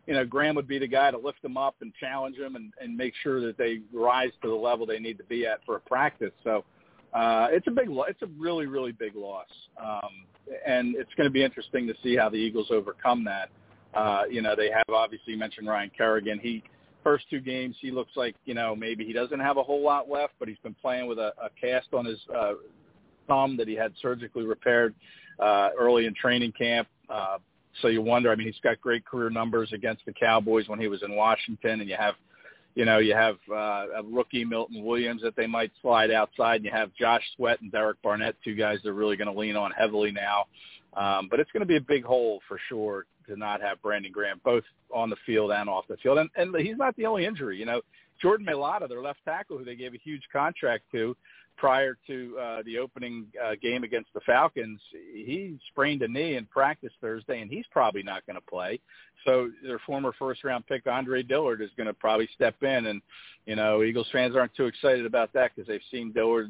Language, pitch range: English, 110-130 Hz